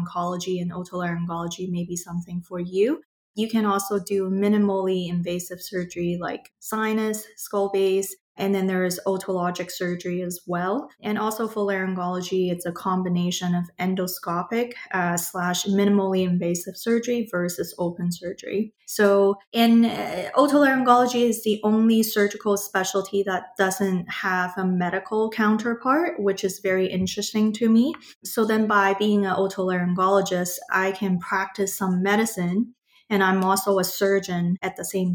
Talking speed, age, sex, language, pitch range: 145 wpm, 20-39, female, English, 180-205 Hz